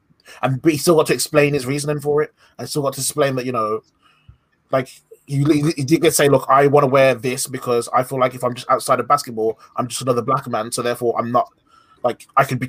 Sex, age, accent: male, 20-39, British